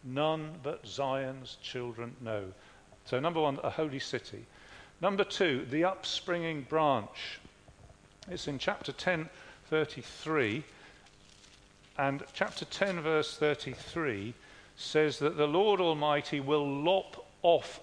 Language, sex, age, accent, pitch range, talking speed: English, male, 50-69, British, 130-165 Hz, 115 wpm